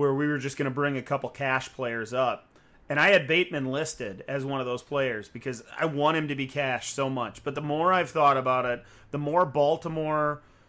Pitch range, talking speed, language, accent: 130-165 Hz, 230 wpm, English, American